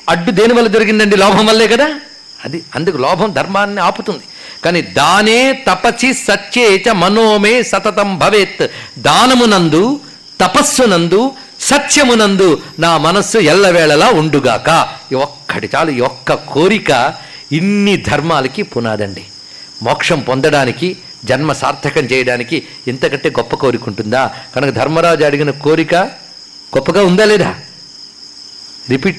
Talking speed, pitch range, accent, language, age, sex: 105 wpm, 150-210 Hz, native, Telugu, 50-69, male